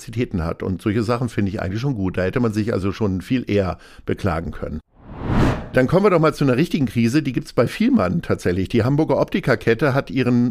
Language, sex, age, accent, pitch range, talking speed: German, male, 50-69, German, 110-140 Hz, 215 wpm